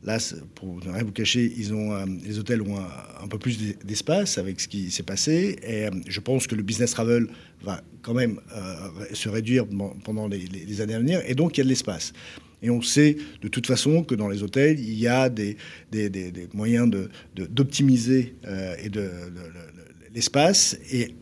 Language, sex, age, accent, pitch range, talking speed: French, male, 40-59, French, 105-130 Hz, 190 wpm